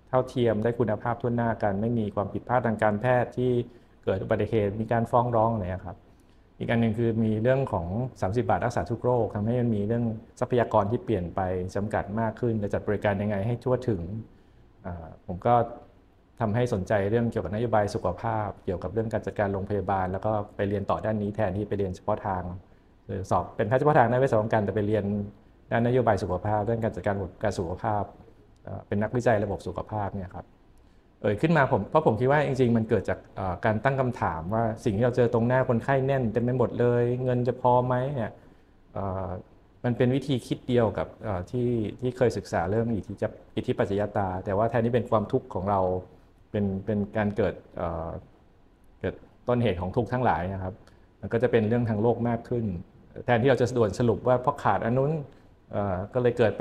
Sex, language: male, Thai